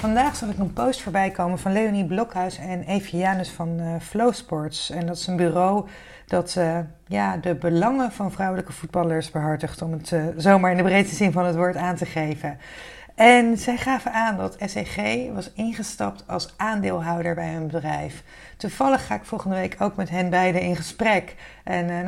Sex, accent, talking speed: female, Dutch, 190 wpm